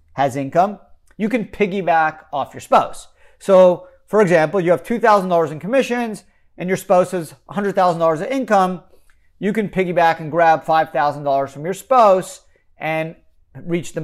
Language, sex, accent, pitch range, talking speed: English, male, American, 140-190 Hz, 150 wpm